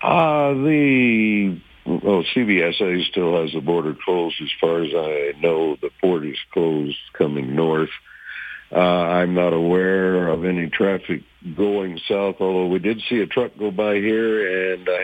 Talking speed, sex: 165 wpm, male